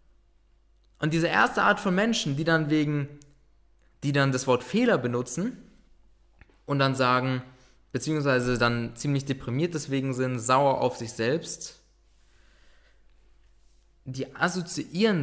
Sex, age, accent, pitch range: male, 20-39, German, 125-170 Hz